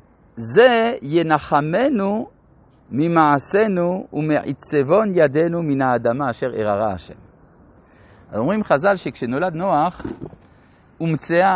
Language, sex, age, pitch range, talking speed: Hebrew, male, 50-69, 120-185 Hz, 80 wpm